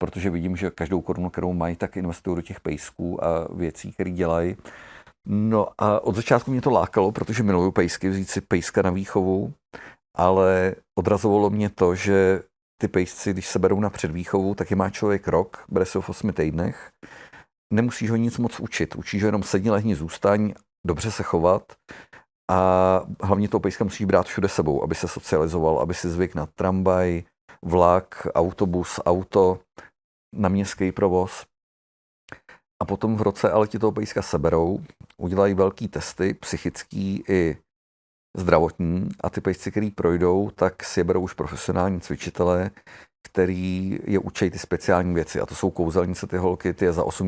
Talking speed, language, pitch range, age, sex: 165 wpm, Czech, 90-100 Hz, 40-59, male